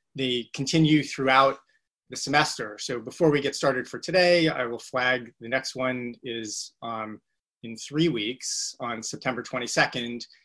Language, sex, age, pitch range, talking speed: English, male, 30-49, 115-140 Hz, 150 wpm